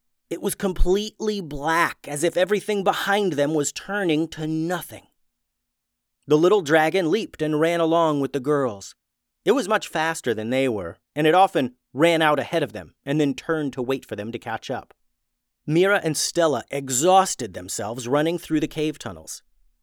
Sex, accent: male, American